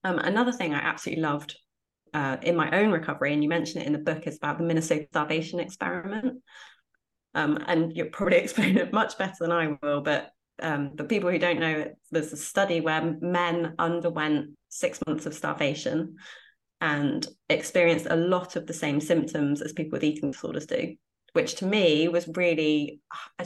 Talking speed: 185 wpm